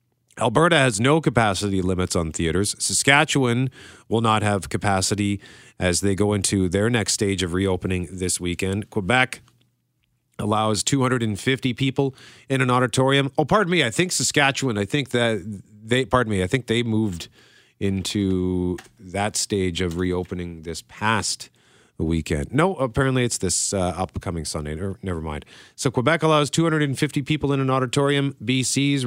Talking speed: 150 wpm